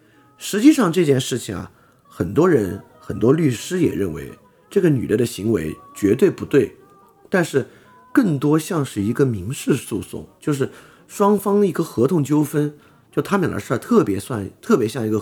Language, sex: Chinese, male